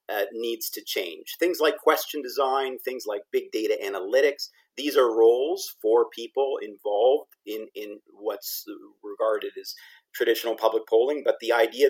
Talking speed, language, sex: 150 wpm, English, male